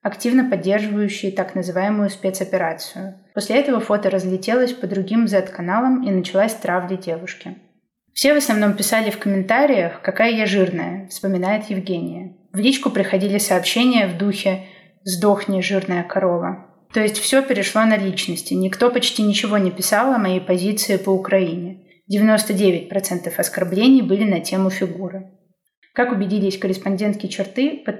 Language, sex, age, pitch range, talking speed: Russian, female, 20-39, 185-220 Hz, 135 wpm